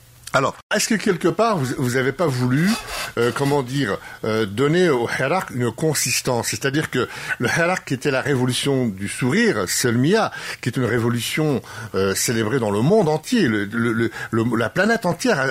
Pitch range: 110-155 Hz